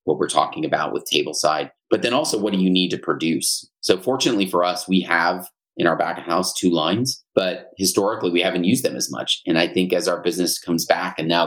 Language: English